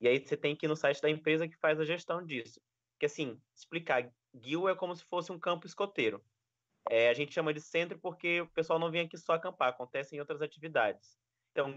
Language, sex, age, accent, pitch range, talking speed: Portuguese, male, 20-39, Brazilian, 135-170 Hz, 225 wpm